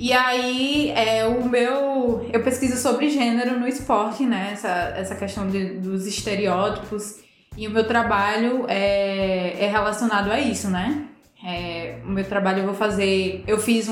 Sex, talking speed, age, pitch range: female, 160 wpm, 20-39, 200-245 Hz